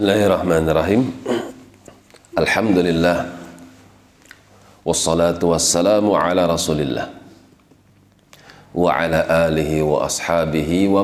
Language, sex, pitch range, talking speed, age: Indonesian, male, 85-100 Hz, 65 wpm, 40-59